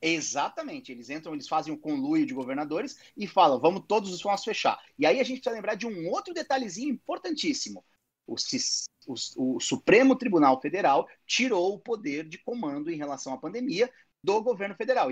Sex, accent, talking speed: male, Brazilian, 185 wpm